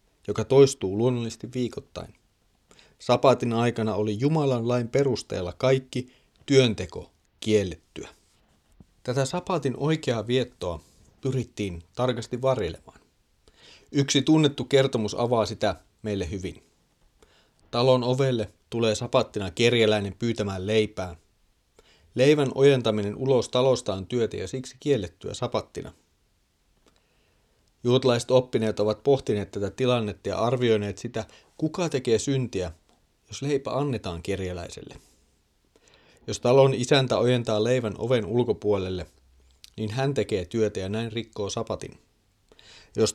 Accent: native